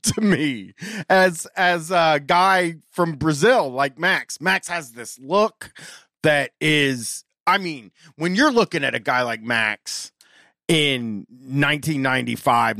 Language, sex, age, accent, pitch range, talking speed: English, male, 30-49, American, 120-175 Hz, 130 wpm